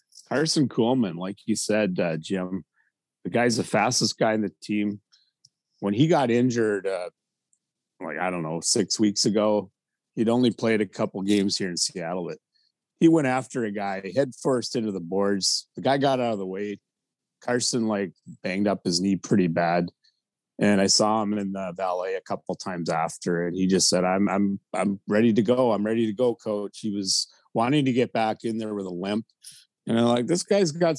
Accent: American